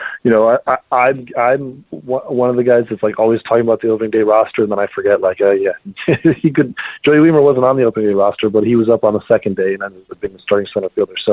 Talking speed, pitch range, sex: 270 wpm, 110-135 Hz, male